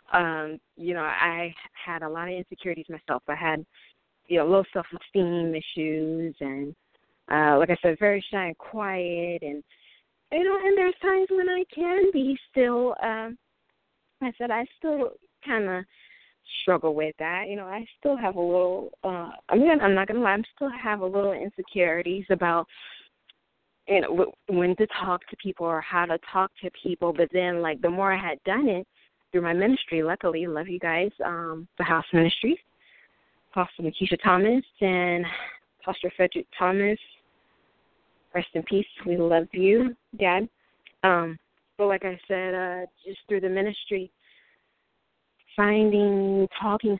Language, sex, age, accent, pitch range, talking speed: English, female, 20-39, American, 170-205 Hz, 165 wpm